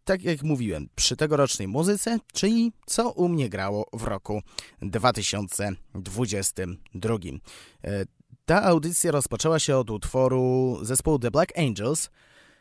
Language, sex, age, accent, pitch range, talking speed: Polish, male, 20-39, native, 105-150 Hz, 115 wpm